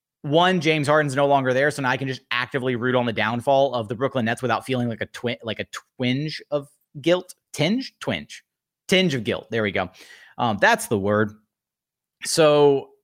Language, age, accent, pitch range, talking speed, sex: English, 30-49, American, 120-145 Hz, 200 wpm, male